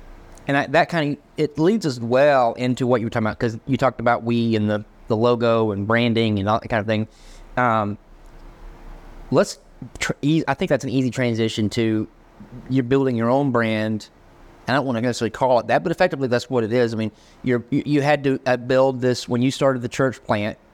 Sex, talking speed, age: male, 225 wpm, 30-49